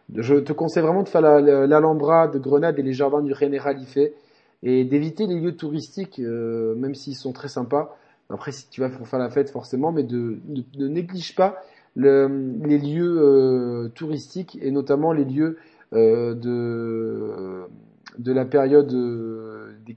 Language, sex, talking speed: French, male, 175 wpm